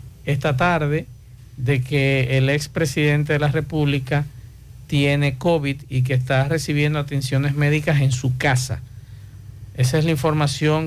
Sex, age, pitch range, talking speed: male, 50-69, 130-150 Hz, 130 wpm